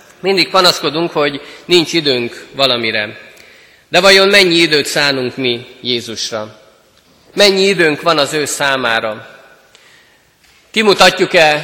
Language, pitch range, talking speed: Hungarian, 130-175 Hz, 105 wpm